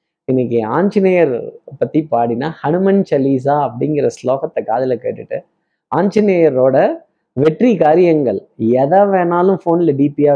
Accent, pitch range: native, 130-175 Hz